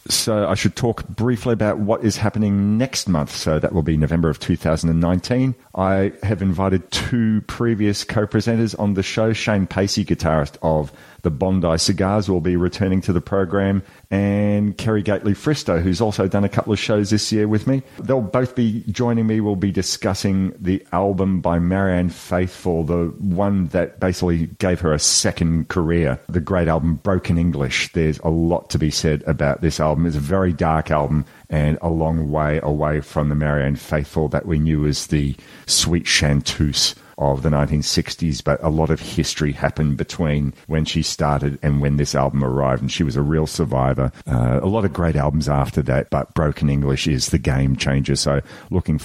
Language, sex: English, male